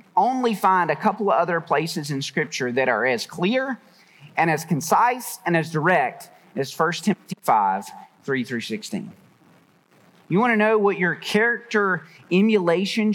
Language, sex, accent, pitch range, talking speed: English, male, American, 165-215 Hz, 155 wpm